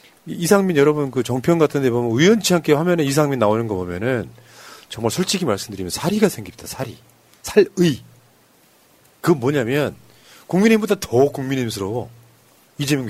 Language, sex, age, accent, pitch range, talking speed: English, male, 40-59, Korean, 120-175 Hz, 125 wpm